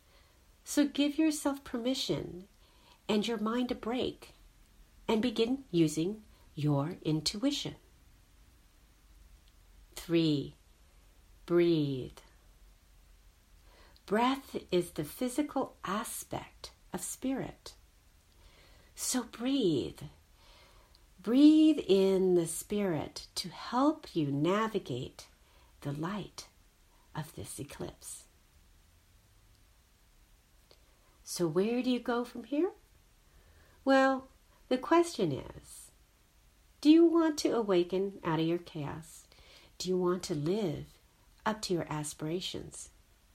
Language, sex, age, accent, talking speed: English, female, 50-69, American, 95 wpm